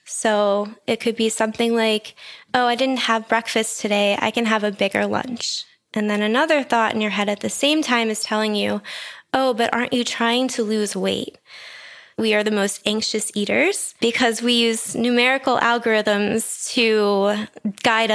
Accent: American